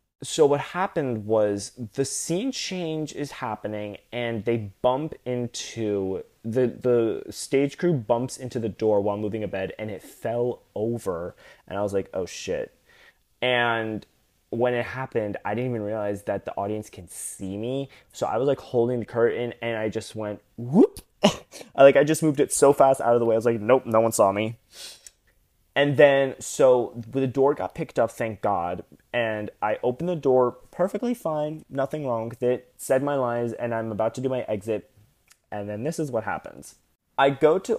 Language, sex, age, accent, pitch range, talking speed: English, male, 20-39, American, 105-135 Hz, 190 wpm